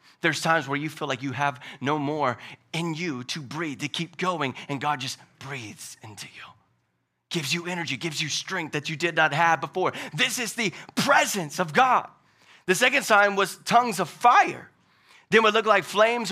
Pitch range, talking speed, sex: 145-185 Hz, 195 wpm, male